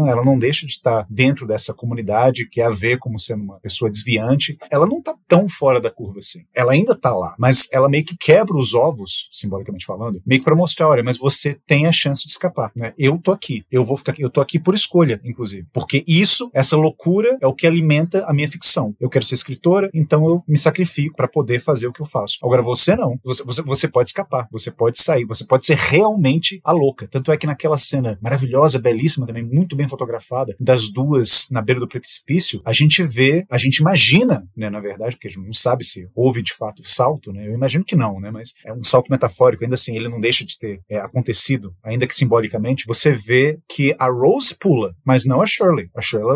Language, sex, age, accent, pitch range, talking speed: Portuguese, male, 30-49, Brazilian, 115-155 Hz, 225 wpm